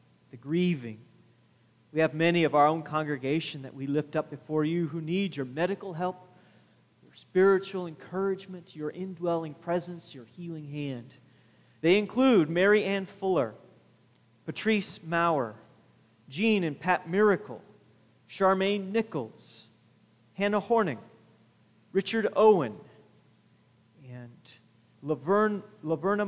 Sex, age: male, 40-59